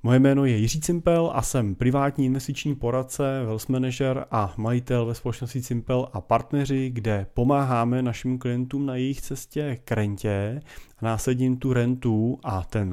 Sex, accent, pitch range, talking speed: male, native, 105-125 Hz, 155 wpm